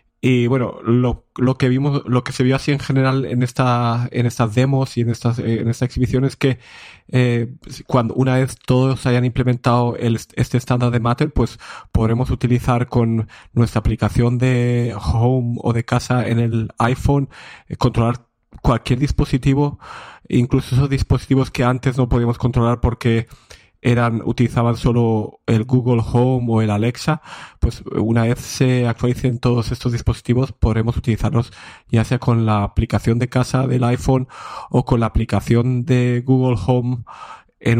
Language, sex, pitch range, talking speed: Spanish, male, 115-130 Hz, 160 wpm